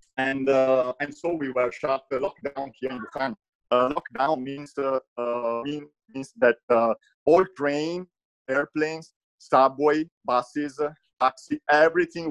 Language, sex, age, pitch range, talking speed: English, male, 50-69, 115-145 Hz, 130 wpm